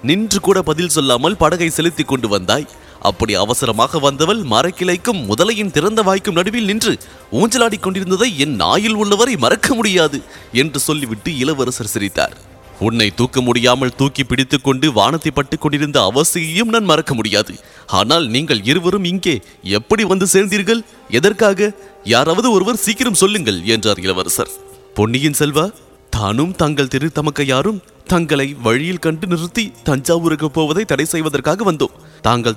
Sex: male